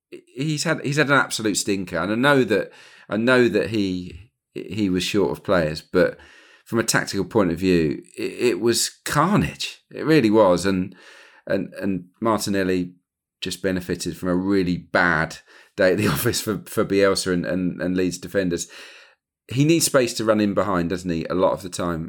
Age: 40-59